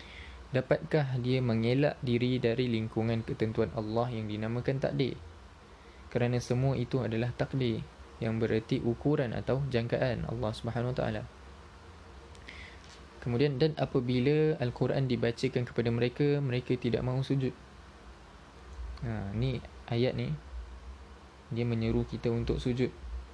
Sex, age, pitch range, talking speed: male, 20-39, 80-125 Hz, 115 wpm